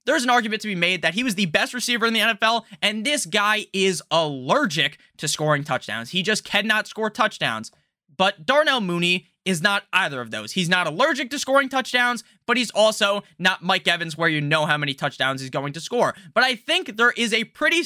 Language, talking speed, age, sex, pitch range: English, 220 wpm, 20-39, male, 170-225 Hz